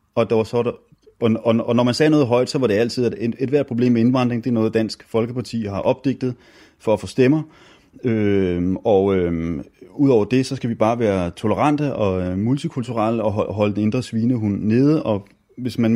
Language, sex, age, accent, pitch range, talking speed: Danish, male, 30-49, native, 100-120 Hz, 220 wpm